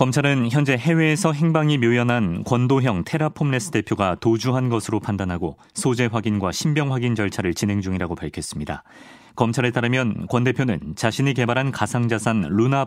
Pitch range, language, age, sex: 105-130 Hz, Korean, 40-59, male